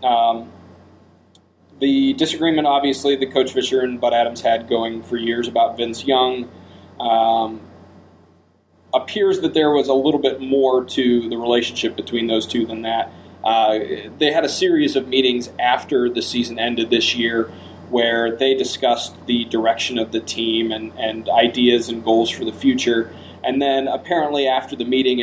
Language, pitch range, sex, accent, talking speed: English, 110-135 Hz, male, American, 165 wpm